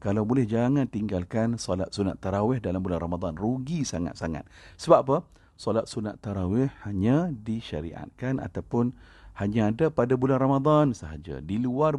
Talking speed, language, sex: 140 wpm, Malay, male